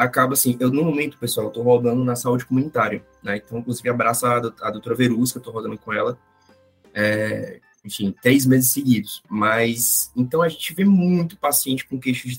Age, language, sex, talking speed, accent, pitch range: 20-39, Portuguese, male, 185 wpm, Brazilian, 125-170 Hz